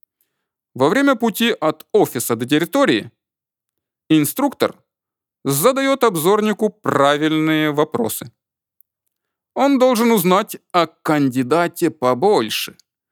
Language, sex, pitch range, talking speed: Russian, male, 150-230 Hz, 80 wpm